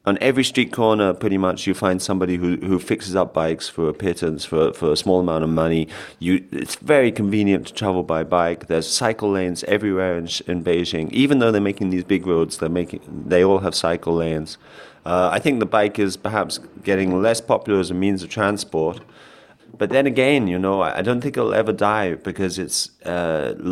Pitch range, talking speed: 85-105 Hz, 220 wpm